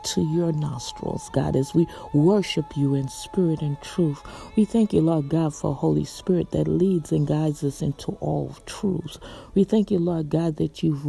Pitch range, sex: 155-190 Hz, female